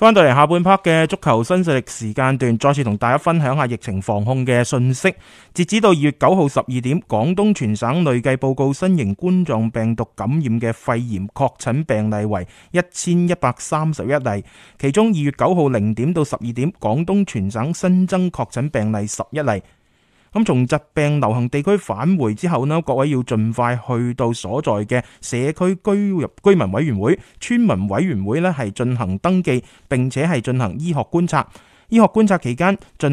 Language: Chinese